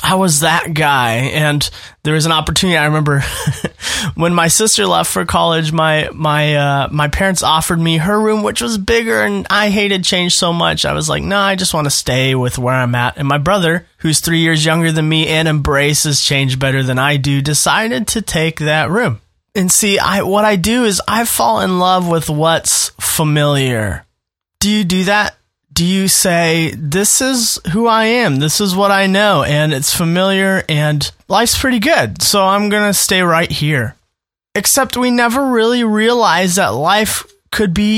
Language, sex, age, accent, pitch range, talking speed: English, male, 20-39, American, 150-205 Hz, 195 wpm